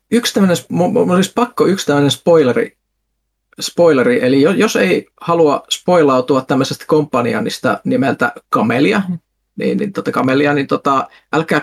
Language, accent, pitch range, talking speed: Finnish, native, 140-180 Hz, 120 wpm